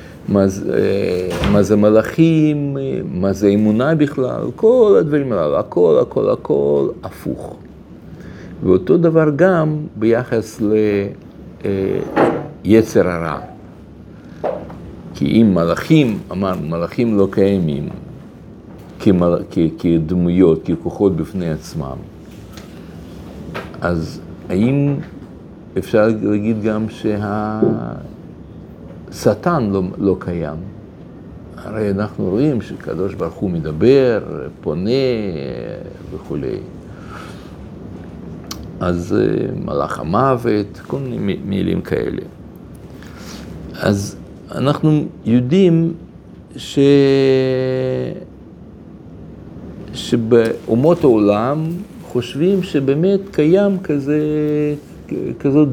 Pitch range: 100-150 Hz